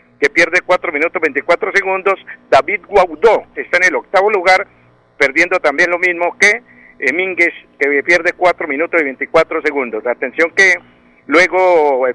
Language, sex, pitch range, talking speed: Spanish, male, 150-195 Hz, 150 wpm